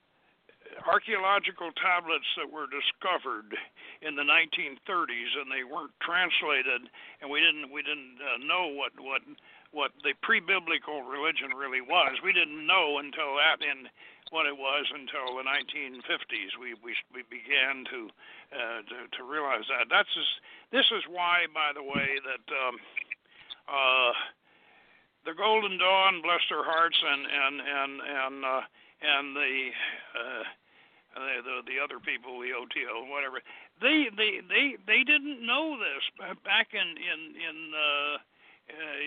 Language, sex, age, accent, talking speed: English, male, 60-79, American, 150 wpm